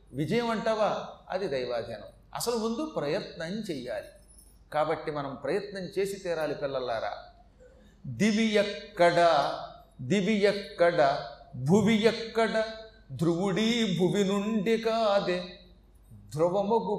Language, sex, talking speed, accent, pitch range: Telugu, male, 90 wpm, native, 145-225 Hz